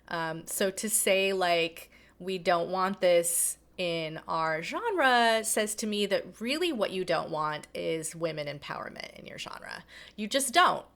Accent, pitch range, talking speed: American, 180-240 Hz, 165 wpm